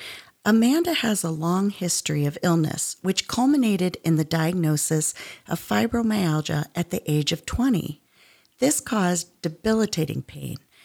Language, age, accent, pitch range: English, 40-59, American, 160-225 Hz